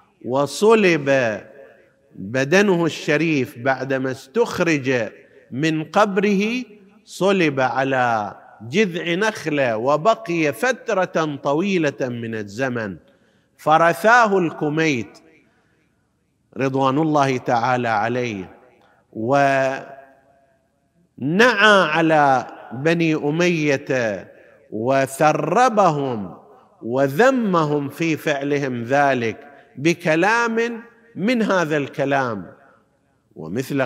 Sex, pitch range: male, 130-170 Hz